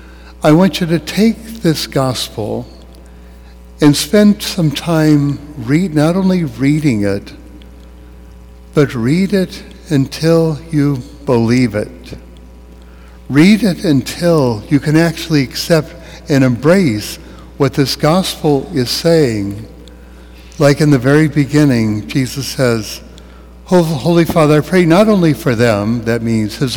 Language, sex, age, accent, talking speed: English, male, 60-79, American, 120 wpm